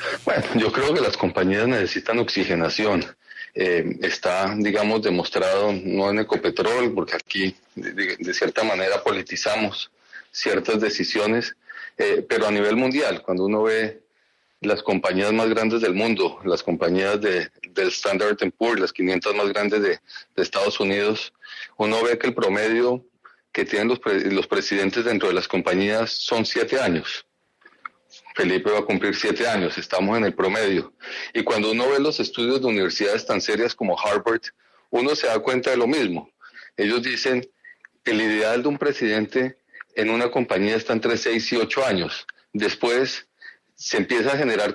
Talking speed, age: 165 wpm, 40-59